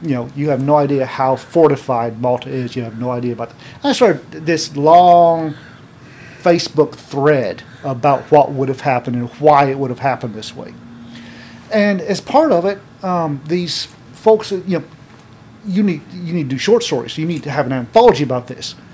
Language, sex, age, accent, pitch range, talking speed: English, male, 40-59, American, 125-165 Hz, 195 wpm